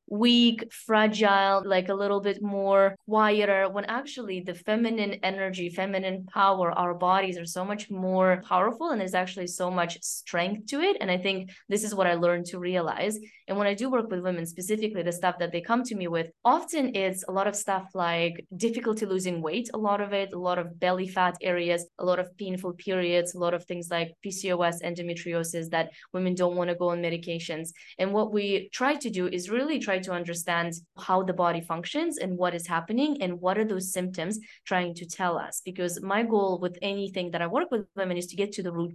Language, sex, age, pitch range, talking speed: English, female, 20-39, 175-200 Hz, 215 wpm